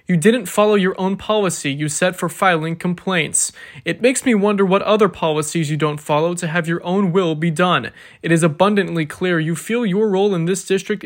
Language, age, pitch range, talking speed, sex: English, 20-39, 160-195 Hz, 210 wpm, male